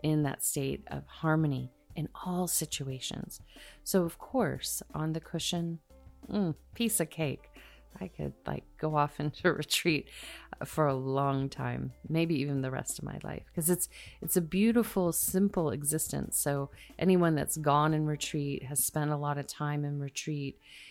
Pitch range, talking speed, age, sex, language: 130-155 Hz, 165 wpm, 30-49, female, English